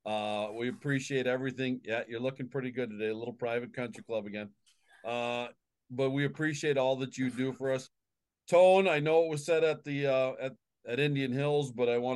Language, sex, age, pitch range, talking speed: English, male, 40-59, 115-145 Hz, 205 wpm